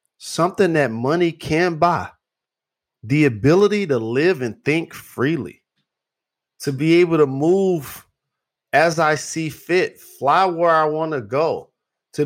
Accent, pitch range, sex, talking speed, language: American, 120-160 Hz, male, 135 wpm, English